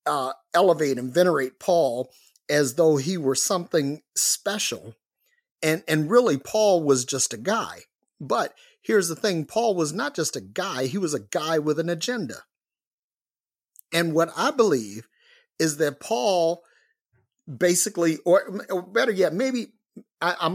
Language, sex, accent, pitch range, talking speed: English, male, American, 150-190 Hz, 145 wpm